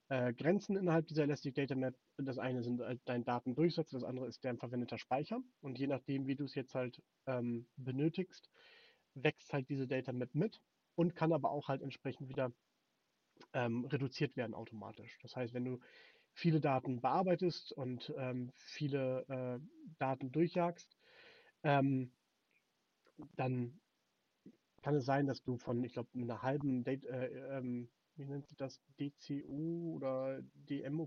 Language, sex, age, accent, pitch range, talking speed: German, male, 30-49, German, 120-145 Hz, 155 wpm